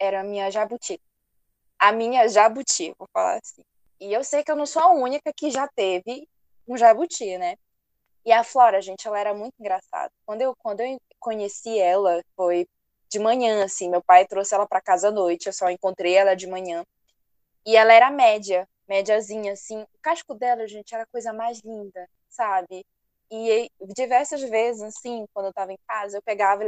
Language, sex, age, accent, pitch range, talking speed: Portuguese, female, 10-29, Brazilian, 205-275 Hz, 195 wpm